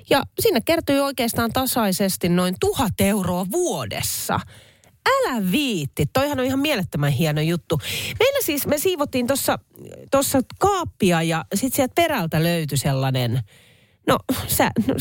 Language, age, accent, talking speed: Finnish, 30-49, native, 130 wpm